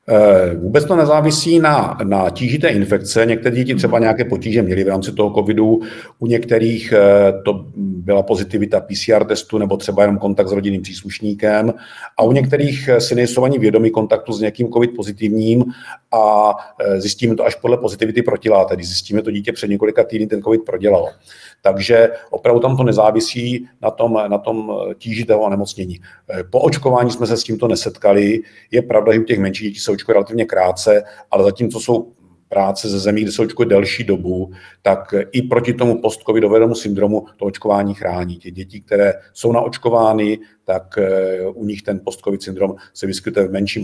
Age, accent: 50-69, native